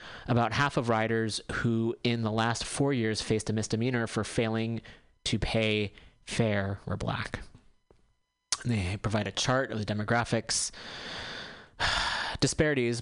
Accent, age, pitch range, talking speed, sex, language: American, 30-49, 105-125 Hz, 130 wpm, male, English